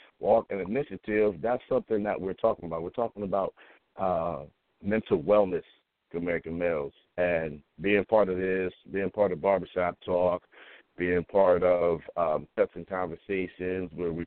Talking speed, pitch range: 155 wpm, 85-105 Hz